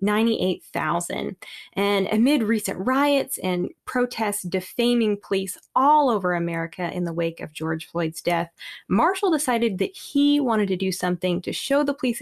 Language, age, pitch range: English, 20-39, 185-235 Hz